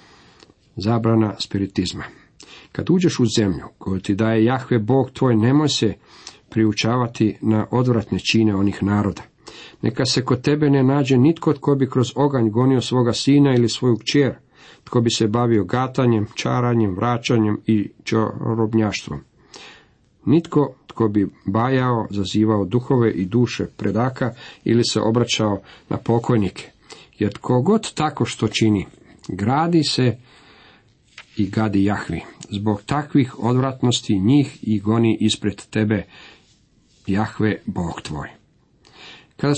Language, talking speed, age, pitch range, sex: Croatian, 125 wpm, 50-69, 105-130 Hz, male